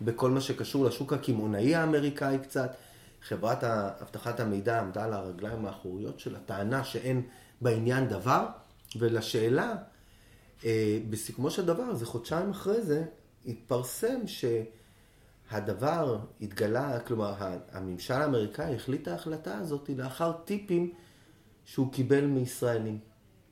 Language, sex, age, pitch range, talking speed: Hebrew, male, 30-49, 105-145 Hz, 105 wpm